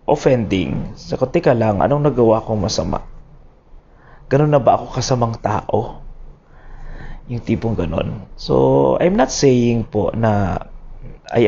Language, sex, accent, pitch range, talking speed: Filipino, male, native, 115-160 Hz, 130 wpm